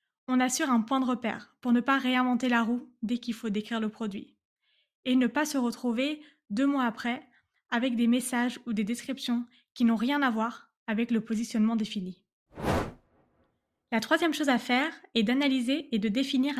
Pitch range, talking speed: 220-265 Hz, 185 wpm